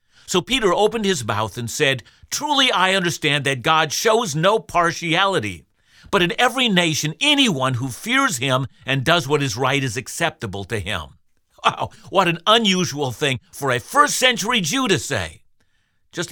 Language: English